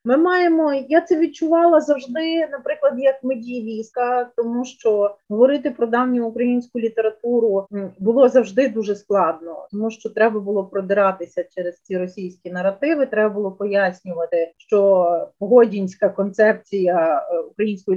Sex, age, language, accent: female, 30-49, Ukrainian, native